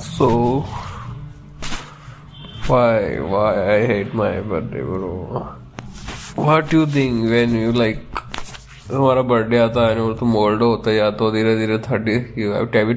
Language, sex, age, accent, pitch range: Hindi, male, 20-39, native, 110-125 Hz